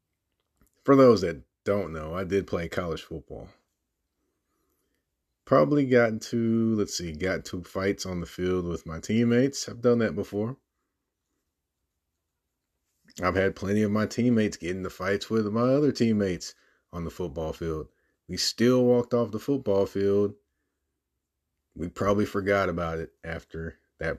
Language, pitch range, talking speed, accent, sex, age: English, 80-110 Hz, 145 wpm, American, male, 30-49